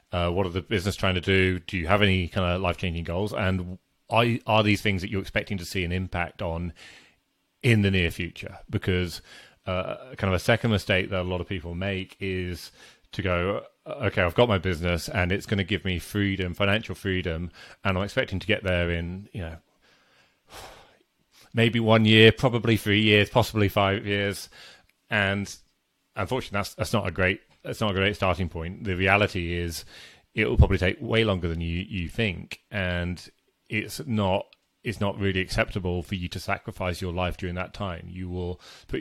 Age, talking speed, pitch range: 30-49, 195 wpm, 90-105 Hz